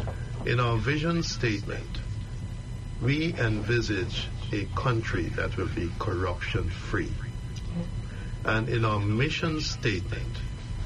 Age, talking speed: 60-79, 95 wpm